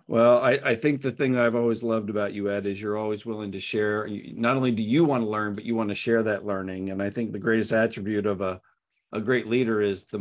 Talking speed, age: 265 wpm, 50-69